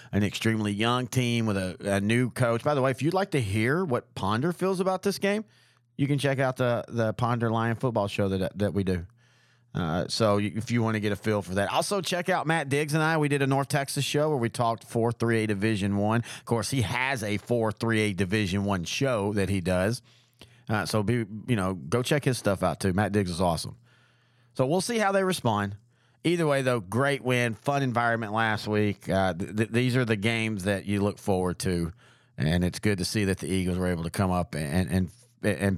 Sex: male